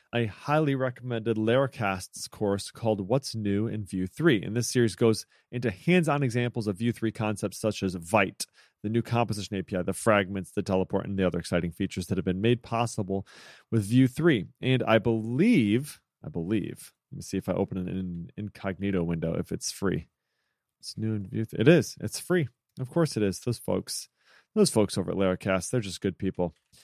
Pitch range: 95-125 Hz